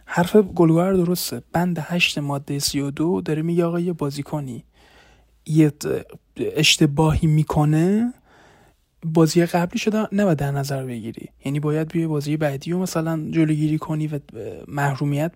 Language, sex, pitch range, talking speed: Persian, male, 145-180 Hz, 135 wpm